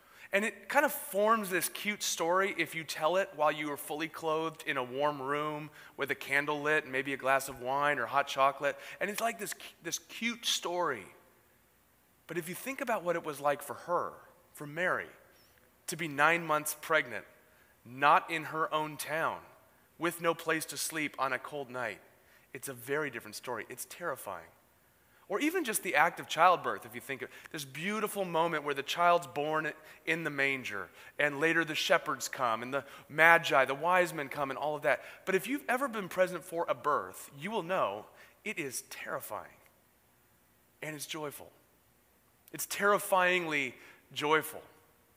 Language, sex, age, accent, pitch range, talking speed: English, male, 30-49, American, 140-175 Hz, 185 wpm